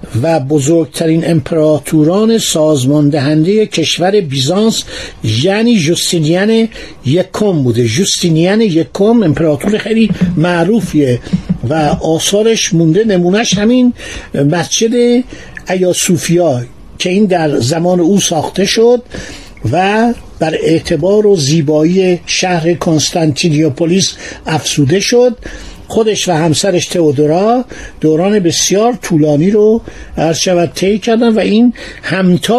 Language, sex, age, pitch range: Persian, male, 60-79, 155-215 Hz